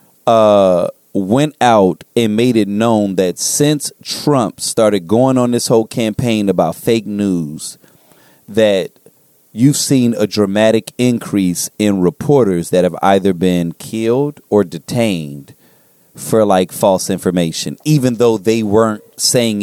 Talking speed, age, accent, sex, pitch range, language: 130 wpm, 30-49, American, male, 105-140 Hz, English